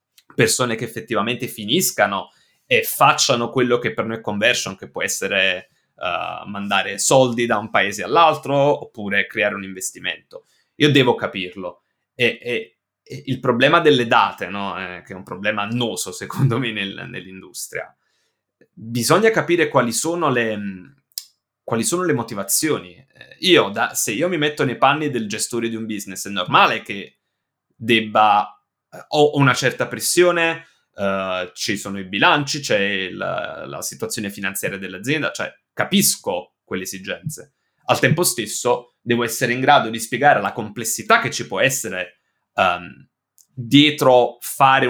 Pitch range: 100-135 Hz